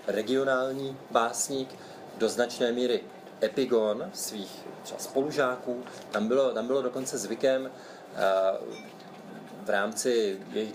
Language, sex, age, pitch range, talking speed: Czech, male, 30-49, 110-130 Hz, 100 wpm